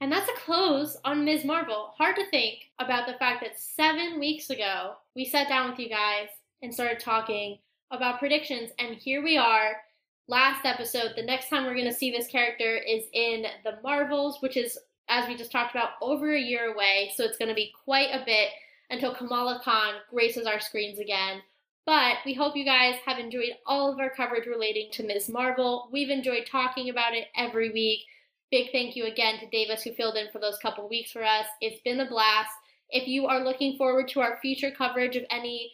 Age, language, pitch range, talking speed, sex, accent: 10-29, English, 225-275 Hz, 210 wpm, female, American